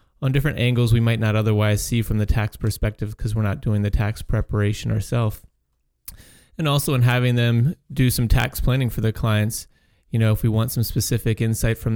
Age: 30-49